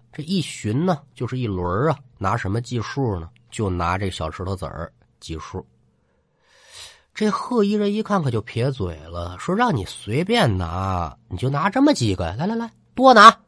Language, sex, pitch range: Chinese, male, 95-155 Hz